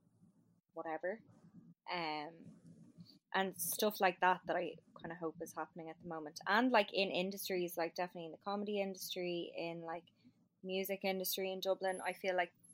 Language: English